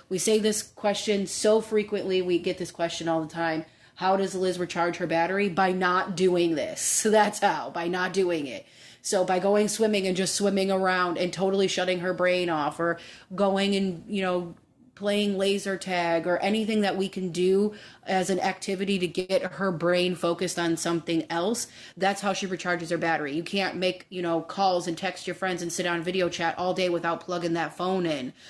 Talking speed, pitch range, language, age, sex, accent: 200 wpm, 165-190 Hz, English, 30-49, female, American